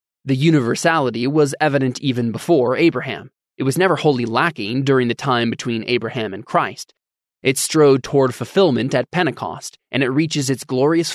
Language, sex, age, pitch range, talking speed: English, male, 20-39, 120-150 Hz, 160 wpm